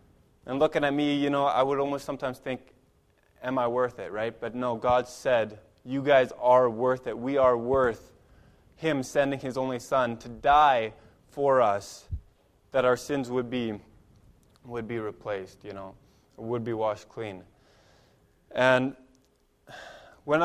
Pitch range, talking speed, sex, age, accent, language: 115-140 Hz, 155 wpm, male, 20-39, American, English